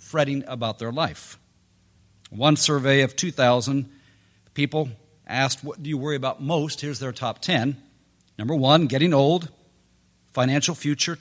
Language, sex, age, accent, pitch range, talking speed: English, male, 50-69, American, 125-165 Hz, 140 wpm